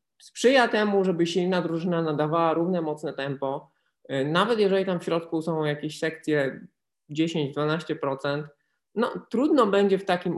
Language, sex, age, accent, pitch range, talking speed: Polish, male, 20-39, native, 140-180 Hz, 135 wpm